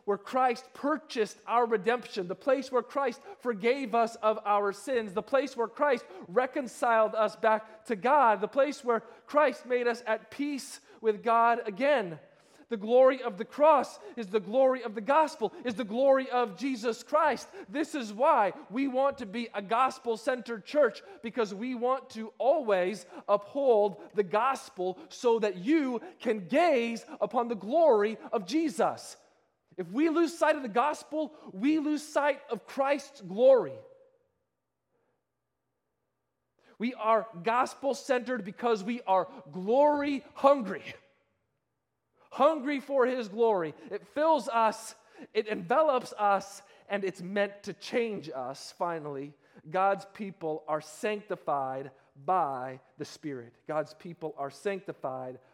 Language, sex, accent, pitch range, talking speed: English, male, American, 200-270 Hz, 135 wpm